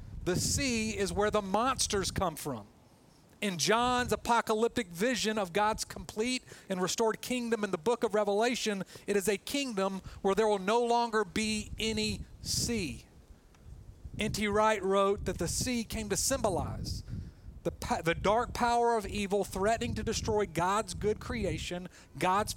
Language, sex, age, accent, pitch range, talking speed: English, male, 40-59, American, 185-230 Hz, 150 wpm